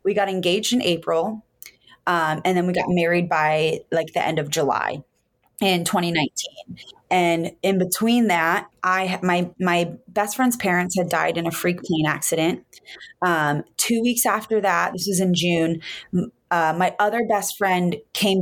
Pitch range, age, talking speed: 170-200 Hz, 20-39, 165 wpm